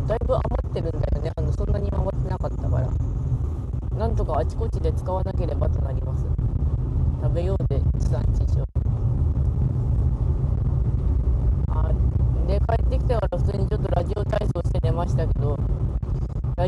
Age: 20-39